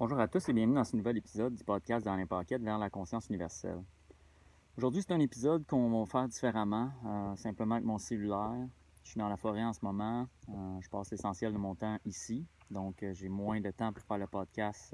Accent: Canadian